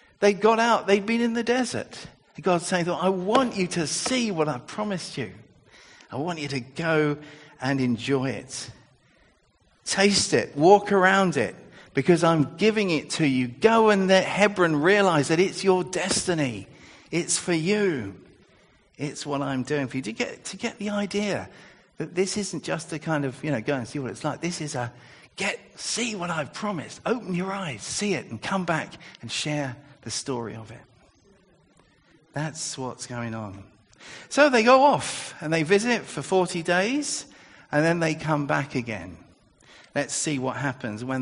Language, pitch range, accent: English, 130-190 Hz, British